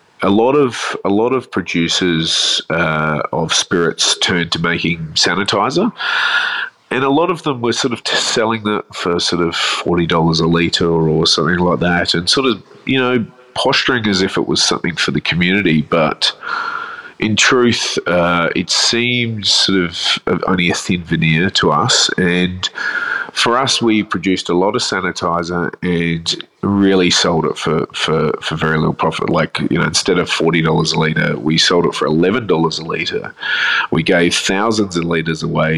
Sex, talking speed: male, 175 wpm